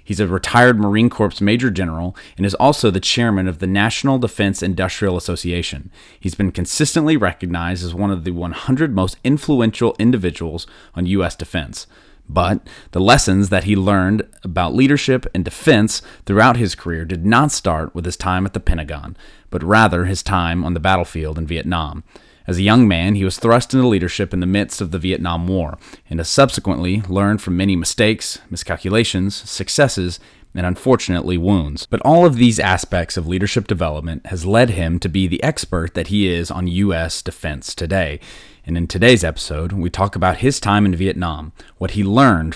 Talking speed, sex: 180 wpm, male